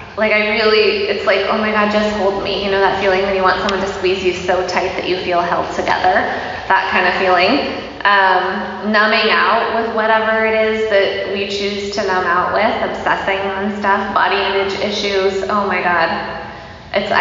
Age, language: 20-39, English